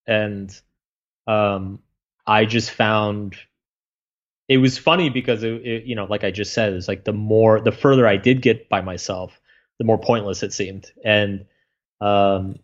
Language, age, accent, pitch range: English, 20-39, American, 100-125 Hz